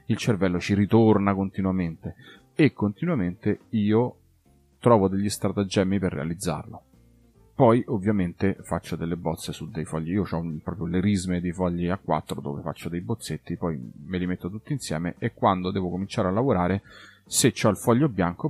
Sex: male